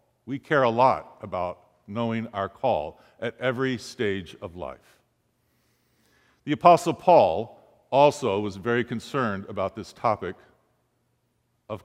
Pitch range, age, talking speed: 115-160 Hz, 50-69, 120 wpm